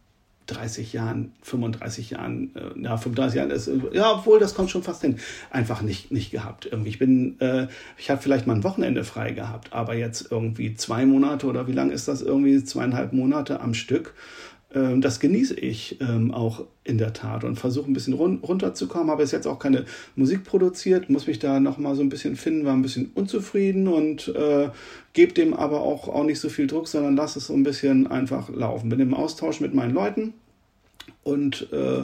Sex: male